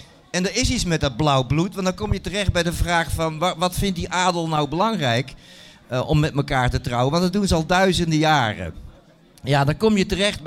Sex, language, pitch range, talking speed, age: male, Dutch, 135-180 Hz, 235 wpm, 50-69